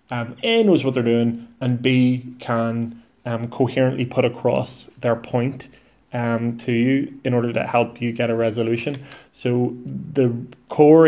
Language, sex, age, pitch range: English, male, 20-39, 115-130 Hz